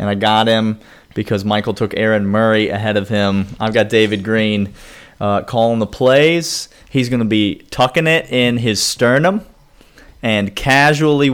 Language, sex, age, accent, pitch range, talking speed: English, male, 30-49, American, 105-130 Hz, 165 wpm